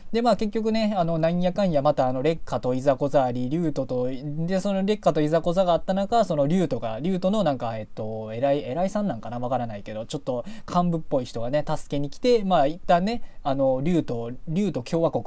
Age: 20-39